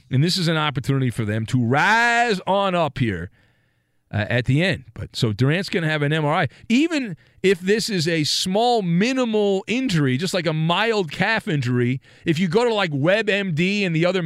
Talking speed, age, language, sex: 200 wpm, 40-59, English, male